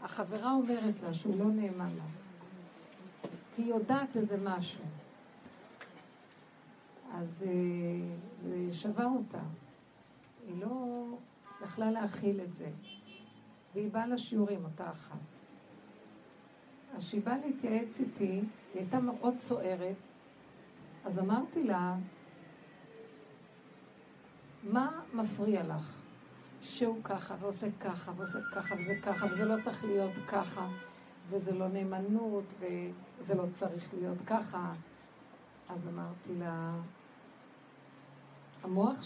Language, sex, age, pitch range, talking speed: Hebrew, female, 50-69, 185-230 Hz, 100 wpm